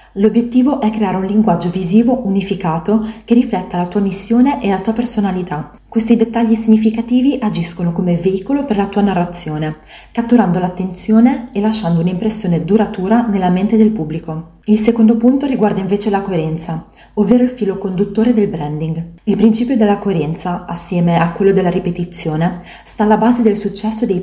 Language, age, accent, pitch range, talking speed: Italian, 20-39, native, 180-225 Hz, 160 wpm